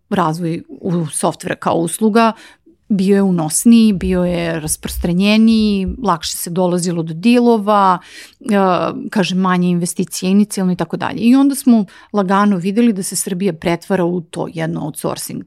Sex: female